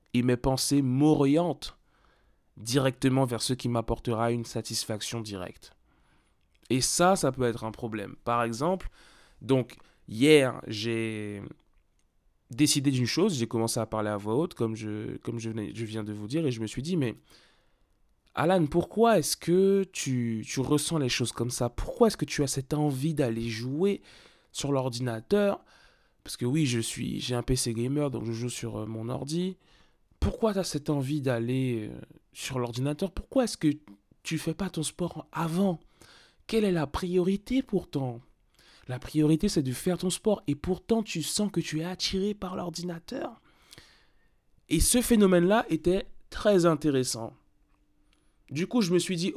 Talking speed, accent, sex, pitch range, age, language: 170 wpm, French, male, 120-175 Hz, 20-39, French